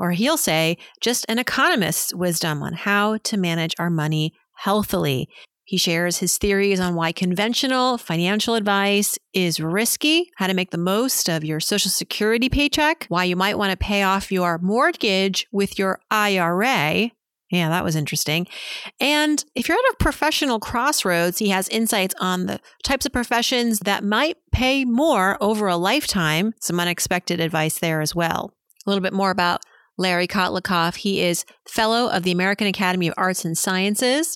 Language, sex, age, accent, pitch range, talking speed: English, female, 40-59, American, 175-220 Hz, 170 wpm